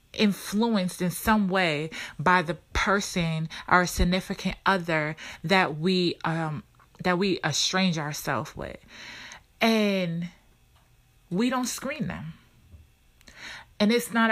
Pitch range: 165-220 Hz